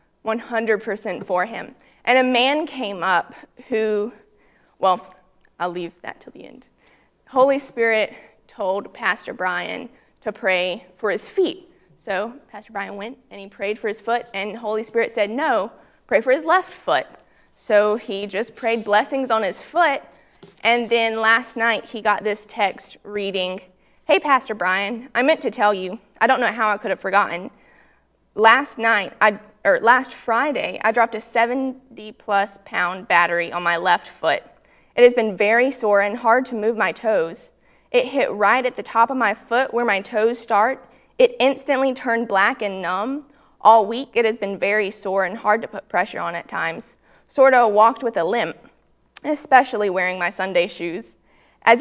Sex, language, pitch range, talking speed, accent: female, English, 200-245 Hz, 175 wpm, American